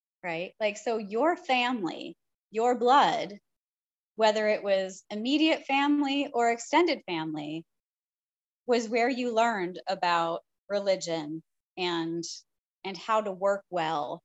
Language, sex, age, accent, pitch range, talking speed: English, female, 30-49, American, 185-245 Hz, 115 wpm